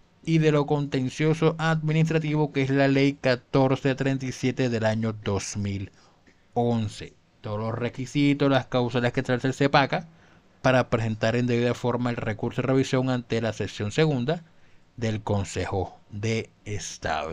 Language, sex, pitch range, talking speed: Spanish, male, 115-155 Hz, 140 wpm